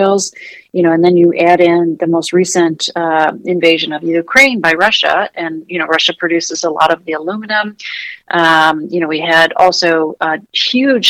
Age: 40-59